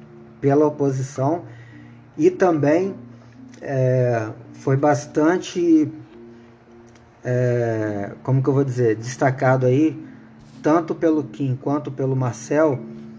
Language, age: Portuguese, 20-39